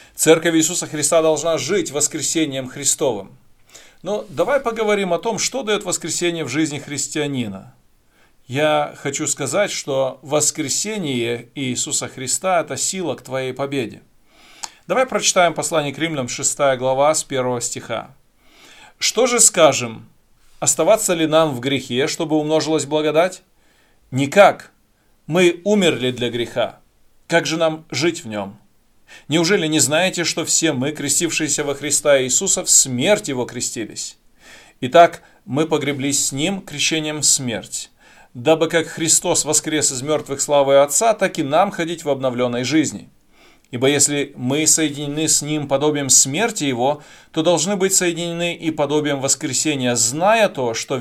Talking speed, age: 140 wpm, 40-59